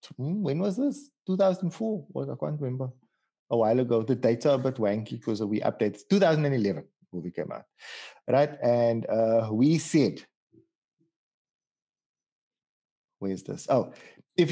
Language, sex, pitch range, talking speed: English, male, 115-155 Hz, 140 wpm